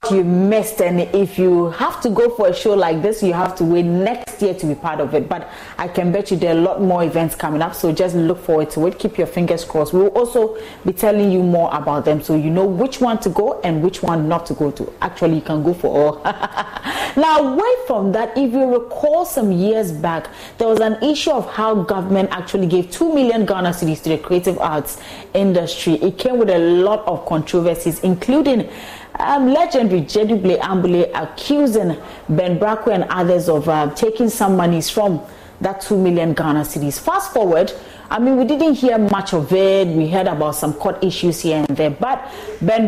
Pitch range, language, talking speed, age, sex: 165-220 Hz, English, 215 wpm, 30-49, female